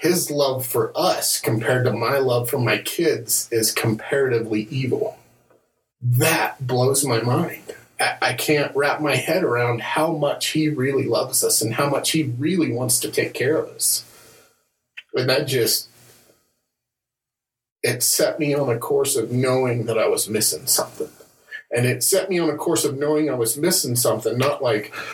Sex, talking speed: male, 170 wpm